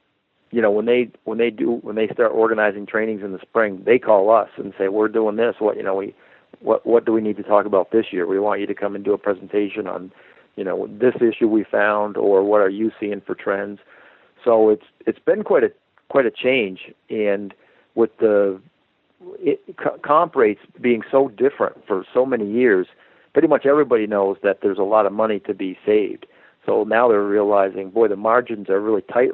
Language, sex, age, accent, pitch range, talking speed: English, male, 50-69, American, 100-120 Hz, 215 wpm